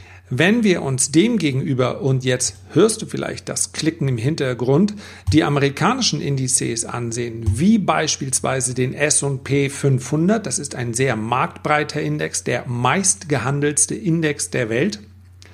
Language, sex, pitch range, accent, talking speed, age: German, male, 120-160 Hz, German, 130 wpm, 40-59